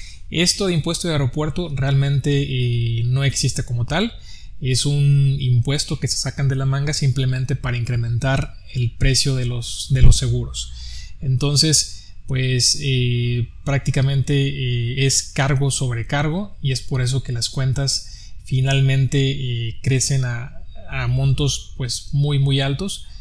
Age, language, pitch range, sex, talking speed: 20-39, Spanish, 125-150 Hz, male, 145 wpm